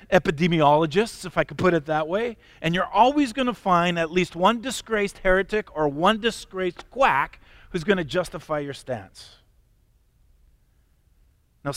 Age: 50-69